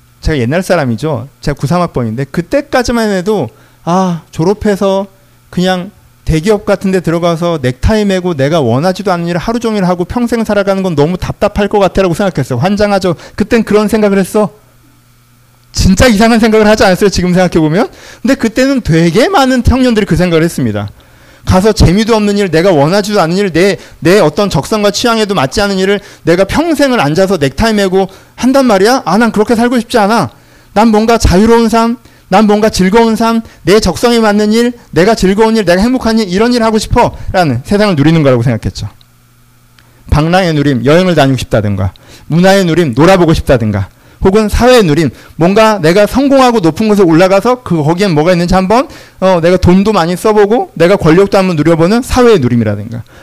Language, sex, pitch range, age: Korean, male, 135-210 Hz, 40-59